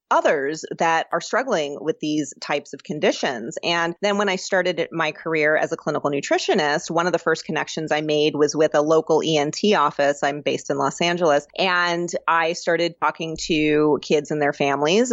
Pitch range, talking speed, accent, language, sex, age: 155-180 Hz, 185 wpm, American, English, female, 30-49